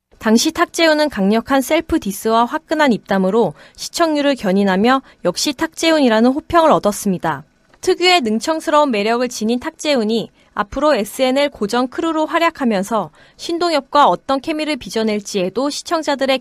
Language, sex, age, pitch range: Korean, female, 20-39, 210-300 Hz